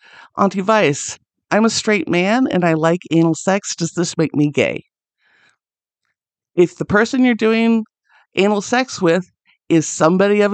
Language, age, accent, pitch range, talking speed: English, 50-69, American, 160-205 Hz, 155 wpm